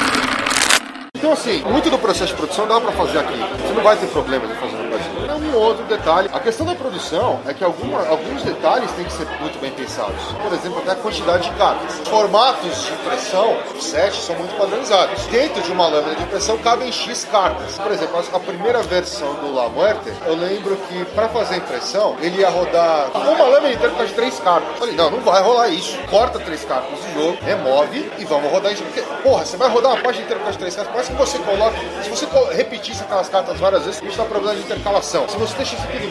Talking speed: 225 wpm